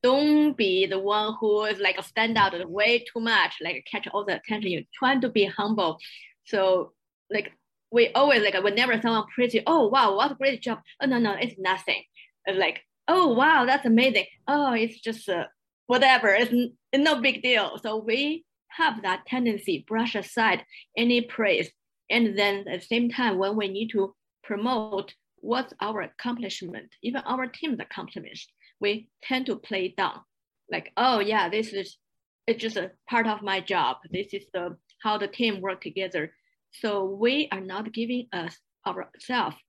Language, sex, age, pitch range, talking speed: English, female, 20-39, 195-245 Hz, 175 wpm